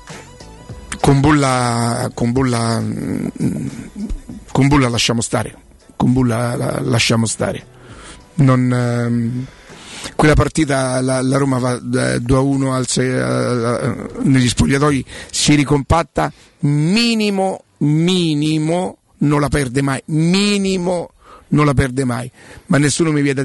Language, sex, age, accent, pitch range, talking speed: Italian, male, 50-69, native, 125-145 Hz, 105 wpm